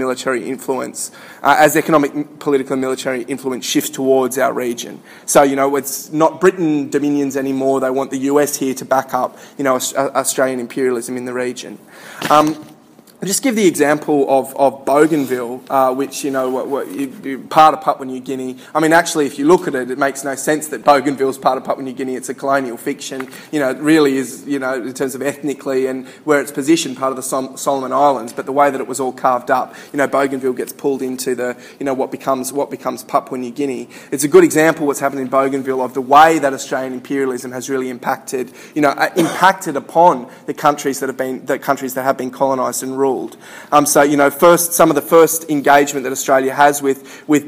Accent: Australian